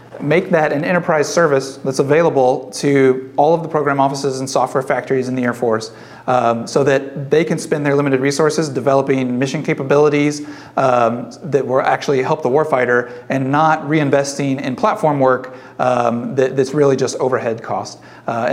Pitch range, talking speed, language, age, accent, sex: 130-155 Hz, 170 wpm, English, 40-59, American, male